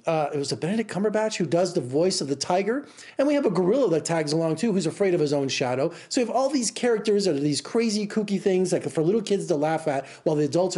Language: English